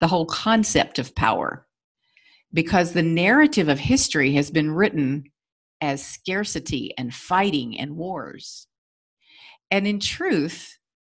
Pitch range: 150-210 Hz